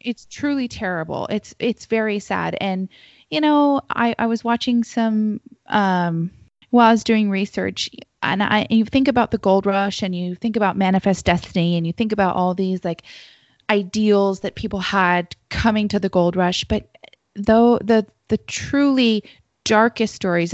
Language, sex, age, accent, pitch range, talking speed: English, female, 20-39, American, 175-215 Hz, 170 wpm